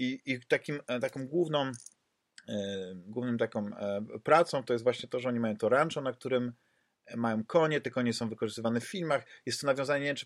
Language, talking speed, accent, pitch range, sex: Polish, 195 wpm, native, 115-150 Hz, male